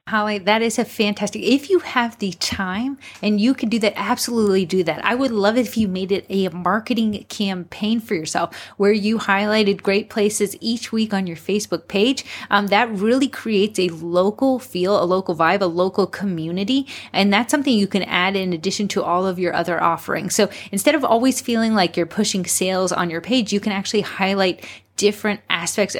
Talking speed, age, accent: 200 wpm, 20-39, American